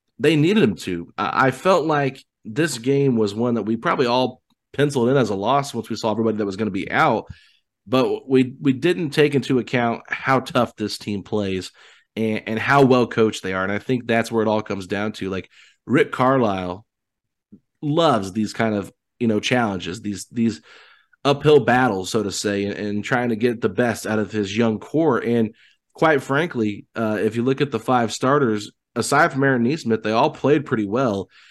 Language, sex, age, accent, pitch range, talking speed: English, male, 30-49, American, 110-135 Hz, 205 wpm